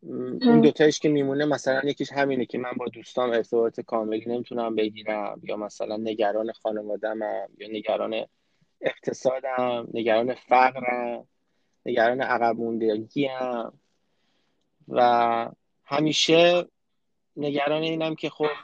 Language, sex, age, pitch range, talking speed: Persian, male, 20-39, 115-145 Hz, 115 wpm